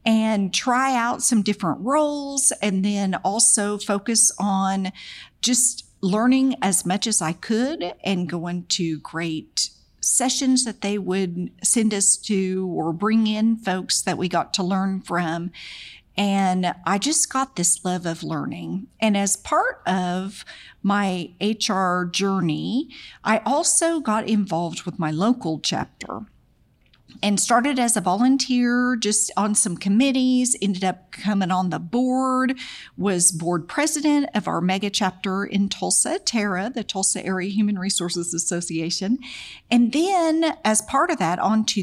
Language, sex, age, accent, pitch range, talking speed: English, female, 50-69, American, 185-245 Hz, 145 wpm